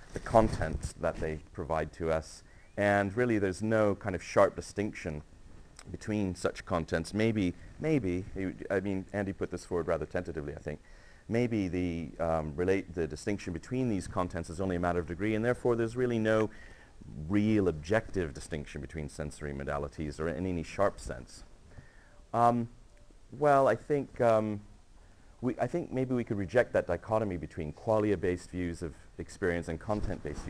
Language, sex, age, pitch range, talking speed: English, male, 40-59, 80-110 Hz, 165 wpm